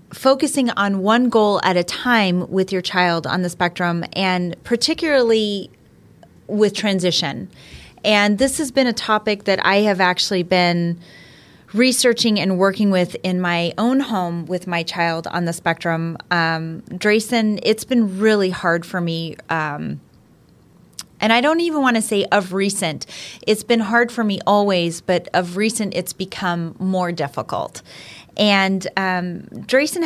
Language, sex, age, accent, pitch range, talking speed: English, female, 30-49, American, 175-215 Hz, 150 wpm